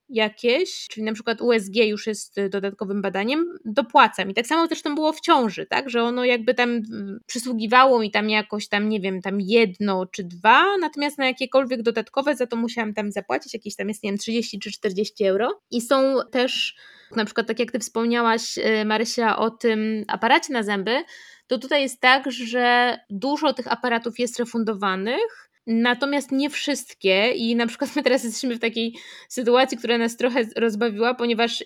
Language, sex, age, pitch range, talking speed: Polish, female, 20-39, 215-255 Hz, 180 wpm